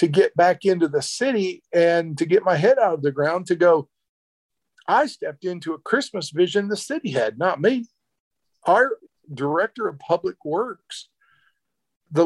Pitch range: 155-225 Hz